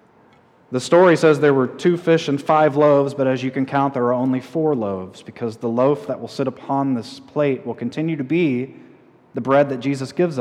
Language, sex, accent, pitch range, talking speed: English, male, American, 115-145 Hz, 220 wpm